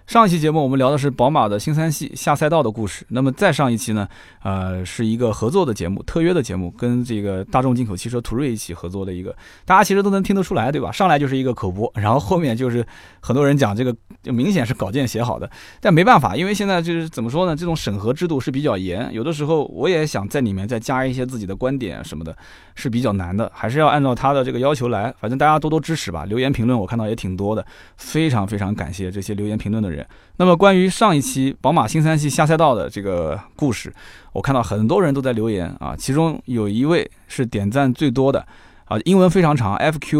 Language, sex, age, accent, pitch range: Chinese, male, 20-39, native, 105-145 Hz